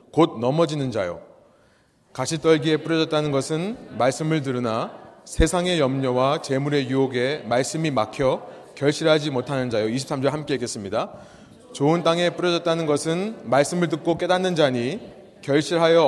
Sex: male